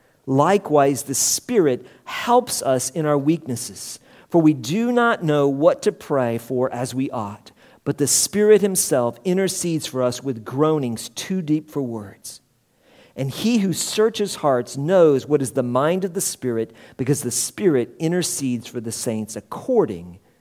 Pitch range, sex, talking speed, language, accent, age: 125-180 Hz, male, 160 wpm, English, American, 50-69